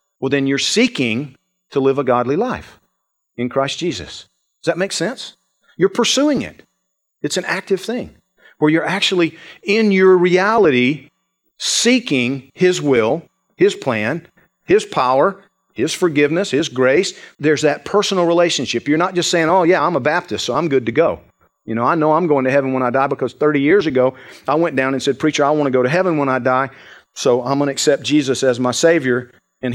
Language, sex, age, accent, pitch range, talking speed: English, male, 50-69, American, 130-180 Hz, 200 wpm